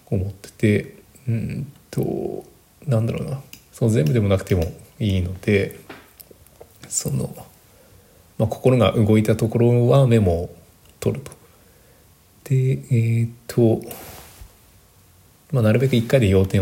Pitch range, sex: 95-120 Hz, male